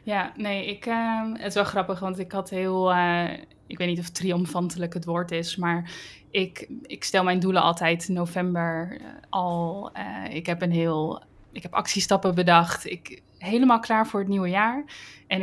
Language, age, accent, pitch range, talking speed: Dutch, 20-39, Dutch, 175-200 Hz, 190 wpm